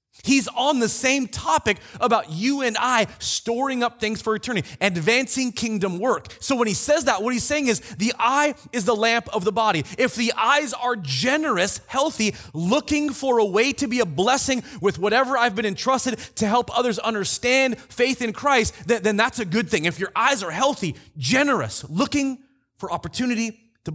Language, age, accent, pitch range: English, 30-49, American, 160-245 Hz